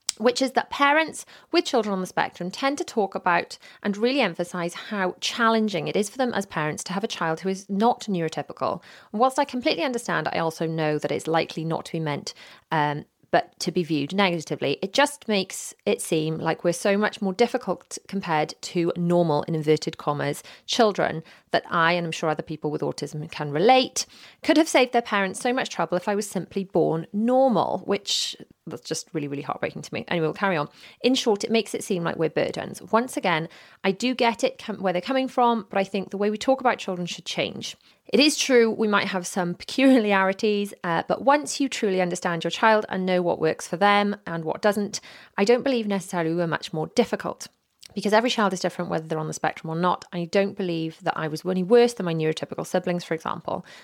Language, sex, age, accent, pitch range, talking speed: English, female, 30-49, British, 165-225 Hz, 220 wpm